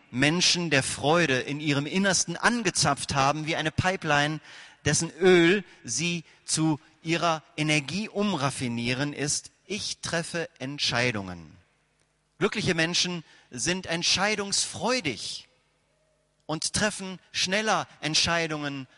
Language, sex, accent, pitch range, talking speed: German, male, German, 135-175 Hz, 95 wpm